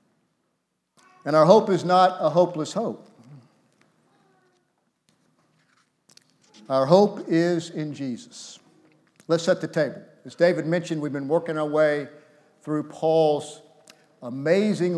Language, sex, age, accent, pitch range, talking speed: English, male, 50-69, American, 150-185 Hz, 110 wpm